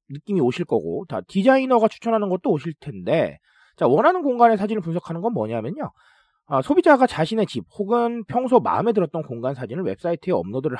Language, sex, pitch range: Korean, male, 150-220 Hz